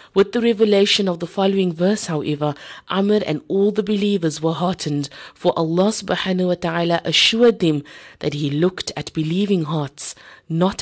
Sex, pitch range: female, 160-195 Hz